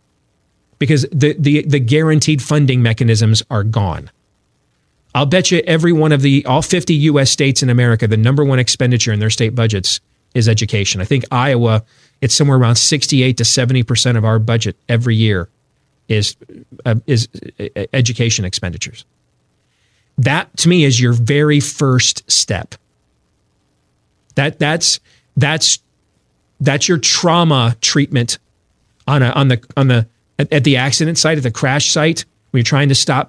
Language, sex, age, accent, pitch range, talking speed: English, male, 40-59, American, 110-145 Hz, 150 wpm